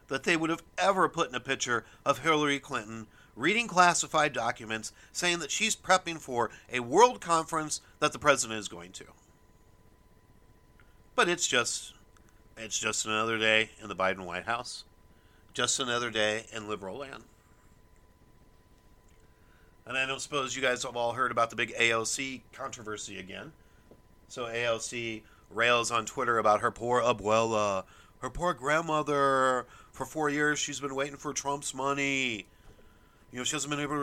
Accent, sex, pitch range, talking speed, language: American, male, 110-145 Hz, 160 wpm, English